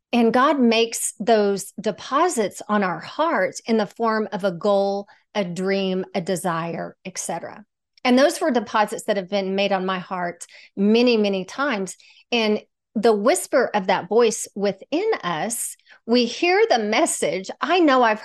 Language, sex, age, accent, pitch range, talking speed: English, female, 40-59, American, 205-265 Hz, 160 wpm